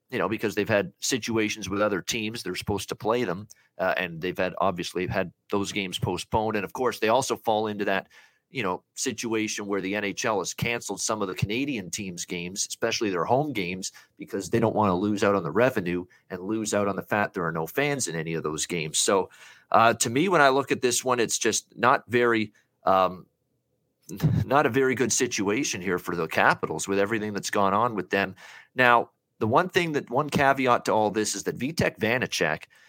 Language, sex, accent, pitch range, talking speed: English, male, American, 100-120 Hz, 215 wpm